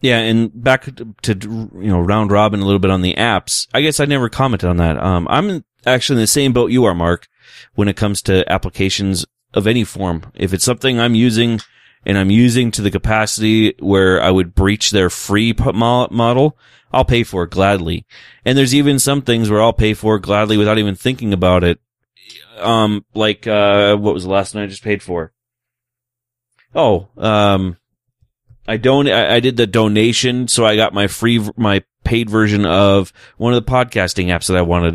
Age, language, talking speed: 30-49, English, 195 wpm